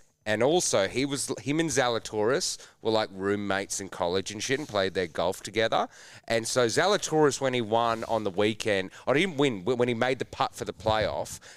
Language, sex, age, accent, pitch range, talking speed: English, male, 30-49, Australian, 100-135 Hz, 210 wpm